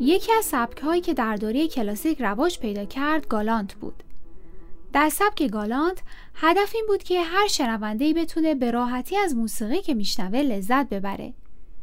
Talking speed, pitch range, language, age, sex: 150 wpm, 215-320 Hz, Persian, 10-29, female